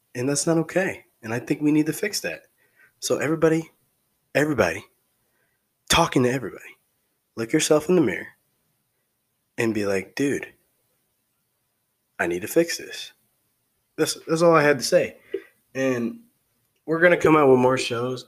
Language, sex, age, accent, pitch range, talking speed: English, male, 20-39, American, 105-130 Hz, 160 wpm